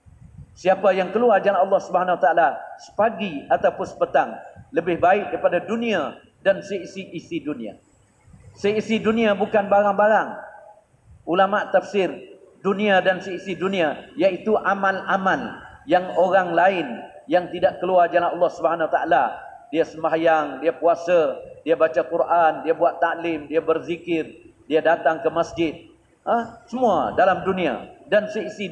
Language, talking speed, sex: Malay, 135 wpm, male